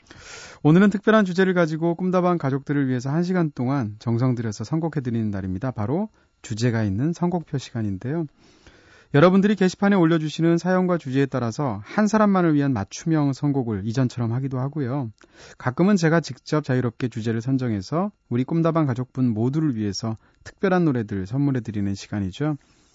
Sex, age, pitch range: male, 30-49, 115-160 Hz